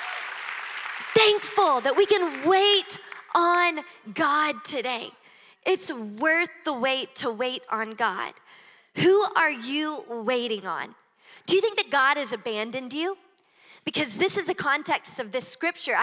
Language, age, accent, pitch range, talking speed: English, 20-39, American, 270-370 Hz, 140 wpm